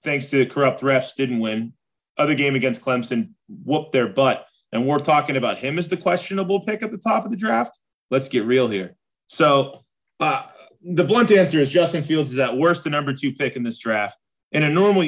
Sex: male